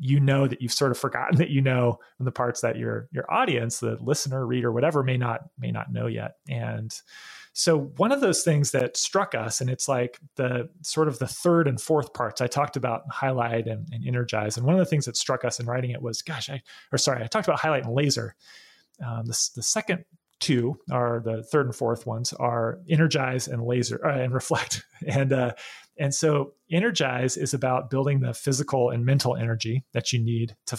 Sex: male